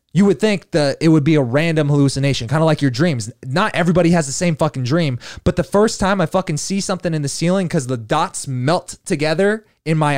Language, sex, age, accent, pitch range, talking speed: English, male, 20-39, American, 130-170 Hz, 235 wpm